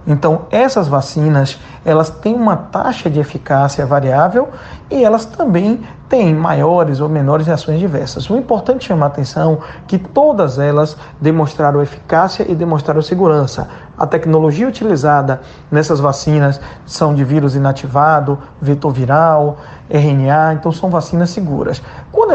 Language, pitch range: Portuguese, 150-180 Hz